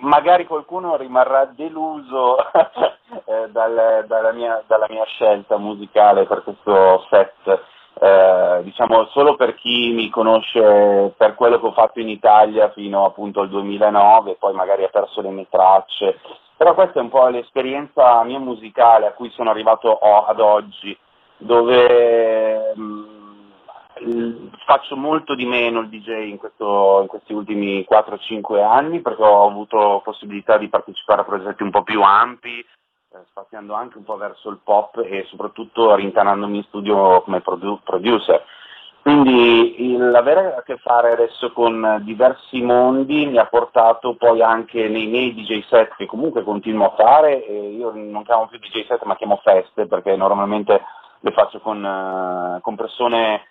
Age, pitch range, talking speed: 30-49, 105-120 Hz, 160 wpm